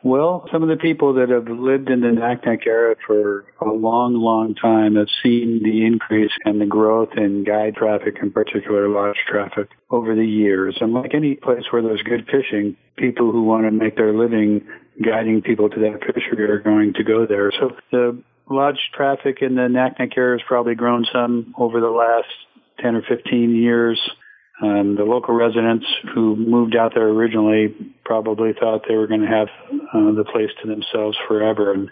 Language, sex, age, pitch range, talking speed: English, male, 50-69, 105-120 Hz, 190 wpm